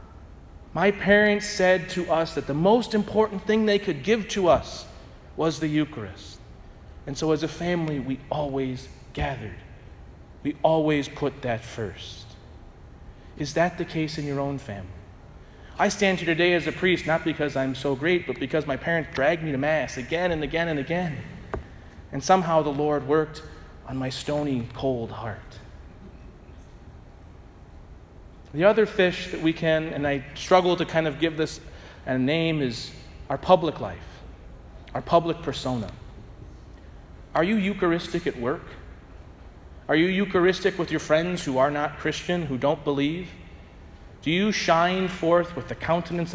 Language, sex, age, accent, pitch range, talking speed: English, male, 30-49, American, 125-170 Hz, 160 wpm